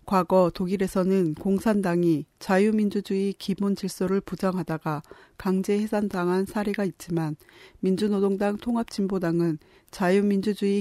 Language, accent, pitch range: Korean, native, 175-205 Hz